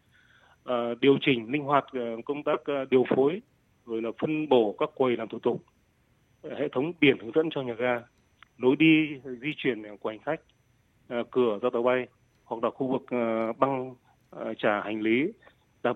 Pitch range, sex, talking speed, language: 120-140 Hz, male, 165 wpm, Vietnamese